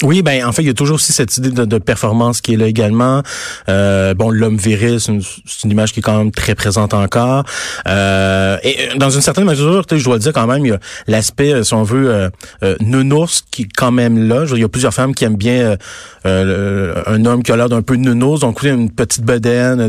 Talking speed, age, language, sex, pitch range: 260 wpm, 30-49, French, male, 105-130 Hz